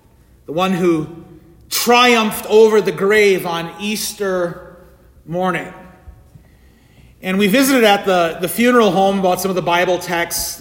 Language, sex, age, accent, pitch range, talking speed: English, male, 30-49, American, 150-190 Hz, 135 wpm